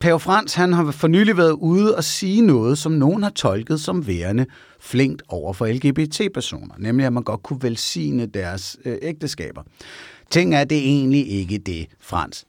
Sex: male